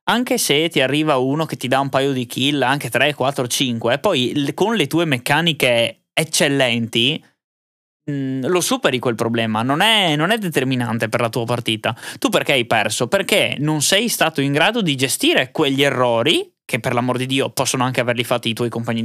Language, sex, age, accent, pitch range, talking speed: Italian, male, 20-39, native, 125-165 Hz, 190 wpm